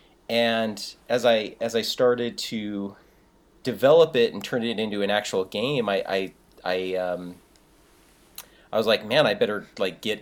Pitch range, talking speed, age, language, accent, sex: 95-115 Hz, 165 wpm, 30-49, English, American, male